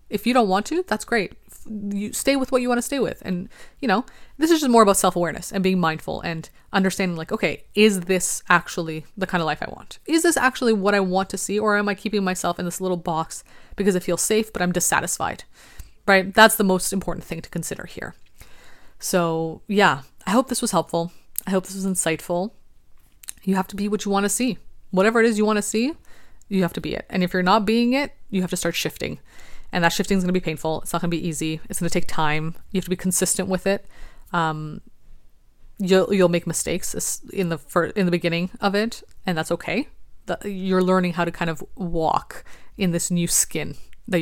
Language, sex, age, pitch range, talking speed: English, female, 20-39, 170-205 Hz, 230 wpm